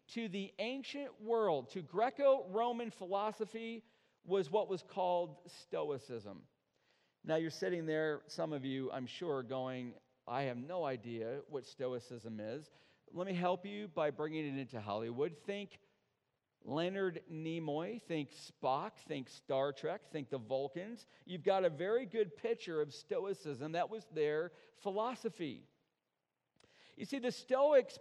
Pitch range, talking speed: 150-230 Hz, 140 wpm